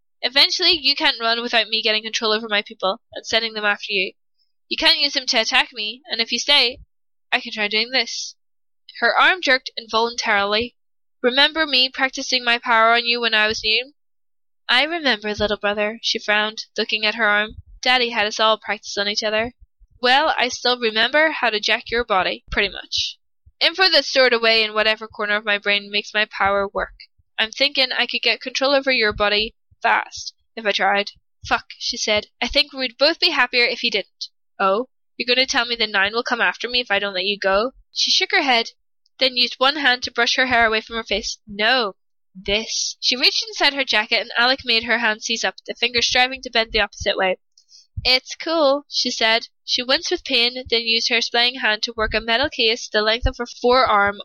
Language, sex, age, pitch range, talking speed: English, female, 10-29, 215-255 Hz, 215 wpm